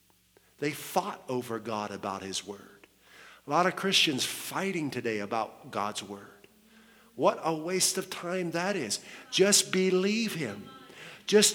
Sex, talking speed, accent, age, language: male, 140 wpm, American, 50-69, English